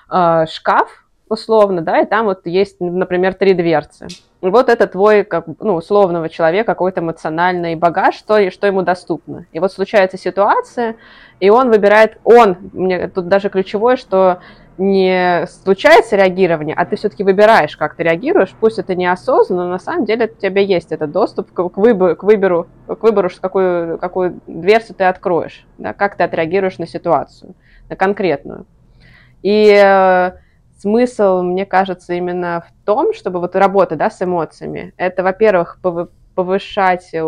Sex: female